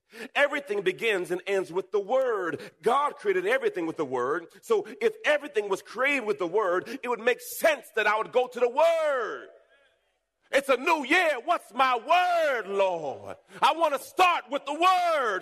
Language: English